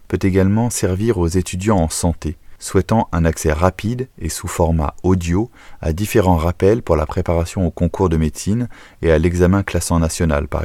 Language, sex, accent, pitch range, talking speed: French, male, French, 85-100 Hz, 175 wpm